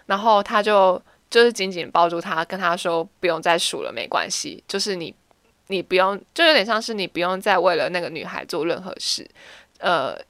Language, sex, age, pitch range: Chinese, female, 20-39, 175-230 Hz